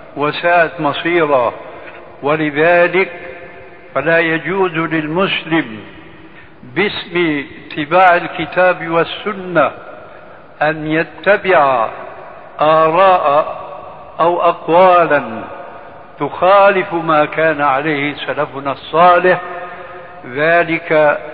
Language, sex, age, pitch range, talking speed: Arabic, male, 60-79, 155-180 Hz, 60 wpm